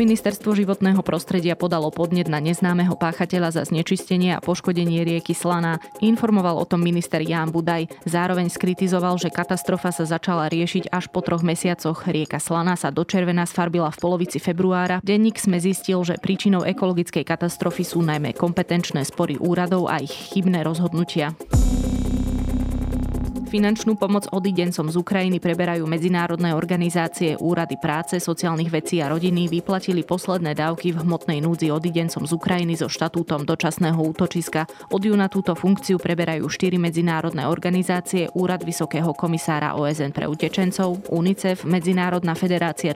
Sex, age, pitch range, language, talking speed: female, 20-39, 165-180 Hz, Slovak, 140 wpm